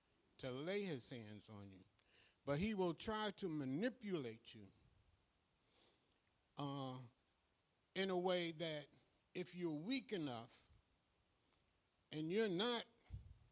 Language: English